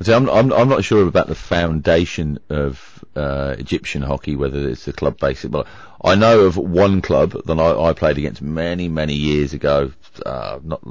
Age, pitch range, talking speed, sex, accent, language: 40-59, 75-95 Hz, 175 wpm, male, British, English